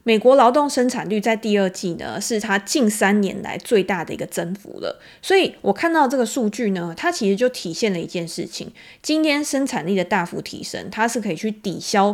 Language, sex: Chinese, female